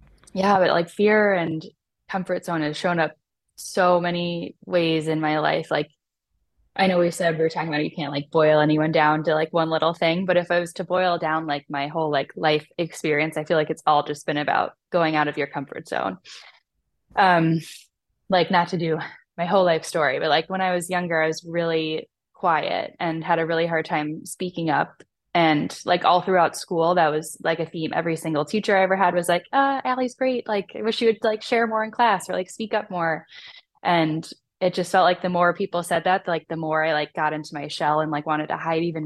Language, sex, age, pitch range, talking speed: English, female, 10-29, 155-185 Hz, 235 wpm